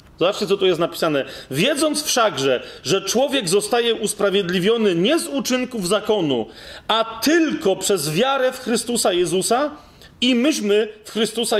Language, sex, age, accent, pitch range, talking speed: Polish, male, 40-59, native, 190-235 Hz, 135 wpm